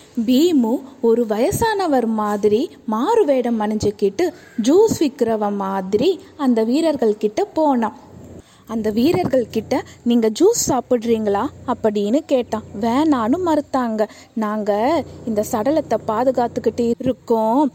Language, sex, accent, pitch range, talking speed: Tamil, female, native, 215-305 Hz, 90 wpm